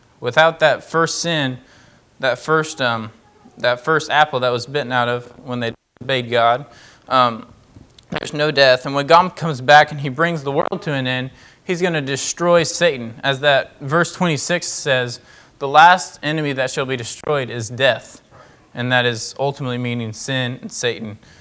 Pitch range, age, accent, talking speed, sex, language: 125-155 Hz, 20-39, American, 175 wpm, male, English